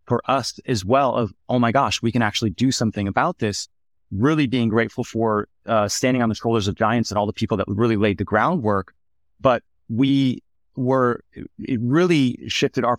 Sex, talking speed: male, 195 wpm